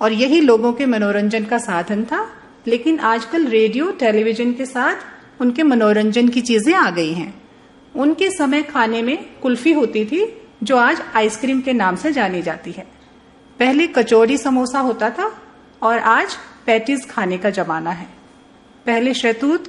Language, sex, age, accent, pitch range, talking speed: English, female, 40-59, Indian, 220-285 Hz, 155 wpm